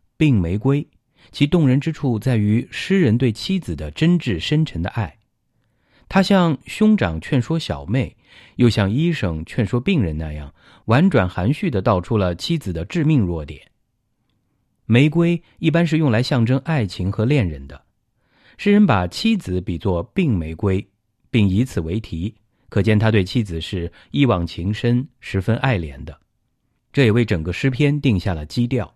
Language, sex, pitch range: English, male, 95-135 Hz